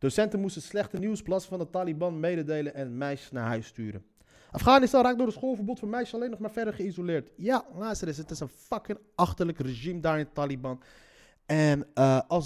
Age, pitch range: 30-49, 115-145 Hz